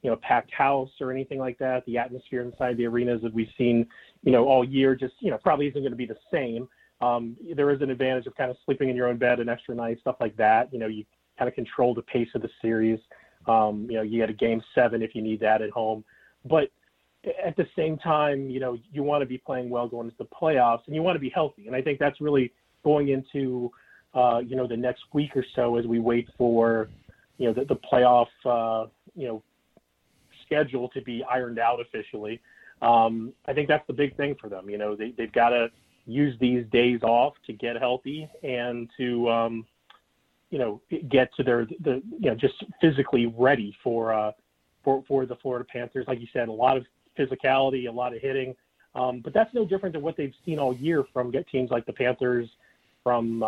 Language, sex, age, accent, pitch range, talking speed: English, male, 30-49, American, 115-135 Hz, 225 wpm